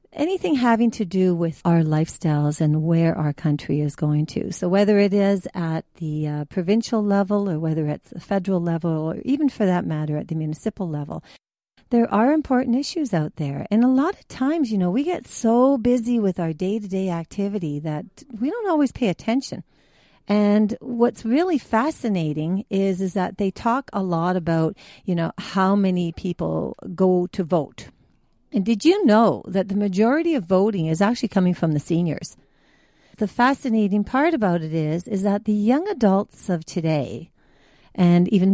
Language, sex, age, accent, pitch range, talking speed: English, female, 50-69, American, 160-220 Hz, 180 wpm